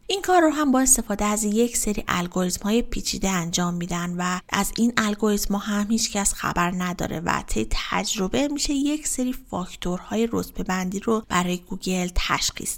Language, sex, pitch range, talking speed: Persian, female, 190-235 Hz, 175 wpm